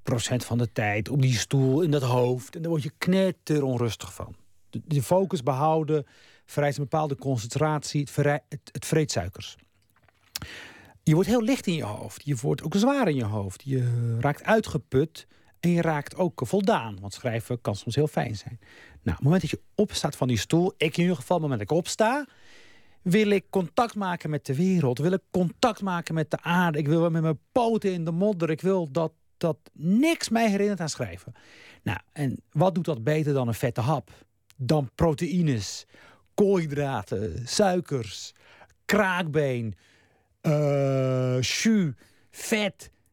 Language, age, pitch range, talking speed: Dutch, 40-59, 120-180 Hz, 175 wpm